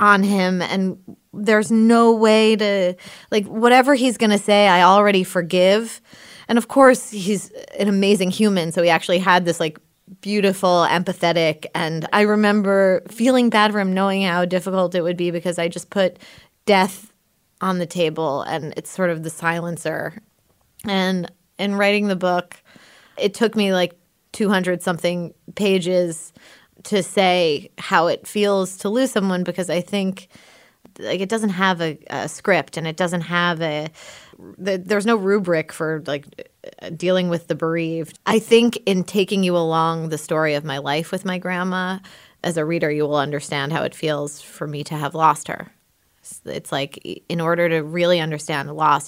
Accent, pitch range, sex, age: American, 165-200 Hz, female, 20-39